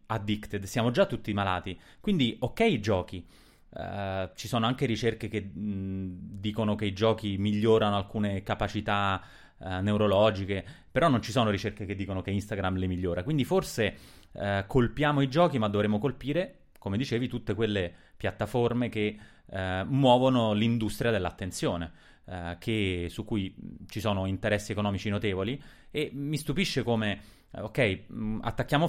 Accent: native